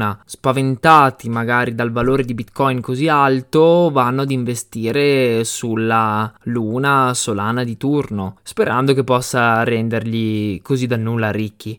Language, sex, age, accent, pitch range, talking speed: Italian, male, 20-39, native, 115-140 Hz, 120 wpm